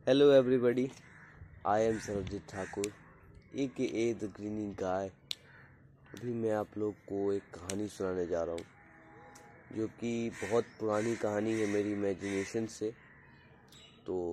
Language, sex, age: Hindi, male, 20-39